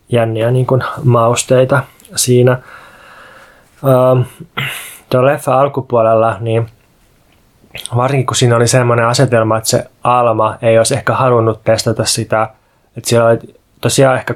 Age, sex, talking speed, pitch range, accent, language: 20-39, male, 125 wpm, 110-125 Hz, native, Finnish